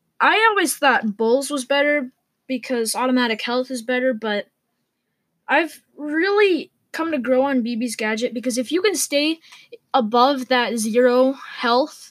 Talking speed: 145 wpm